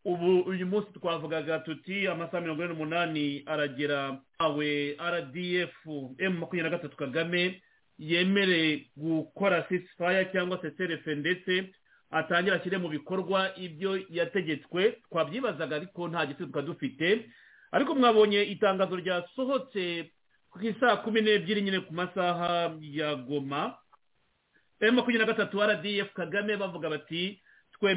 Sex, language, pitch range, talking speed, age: male, English, 160-195 Hz, 110 wpm, 40-59